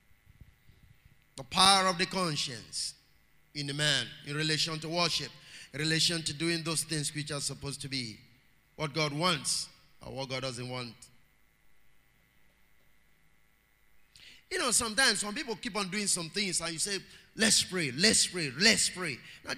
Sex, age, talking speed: male, 30-49, 155 wpm